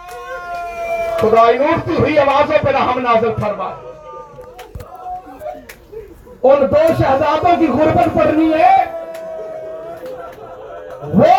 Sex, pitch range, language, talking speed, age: male, 250-345 Hz, Urdu, 80 wpm, 50-69